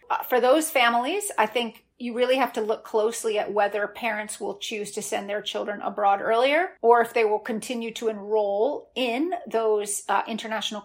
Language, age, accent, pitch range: English, 30-49, American, 210-250 Hz